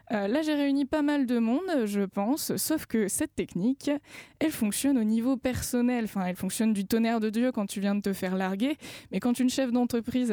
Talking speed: 220 wpm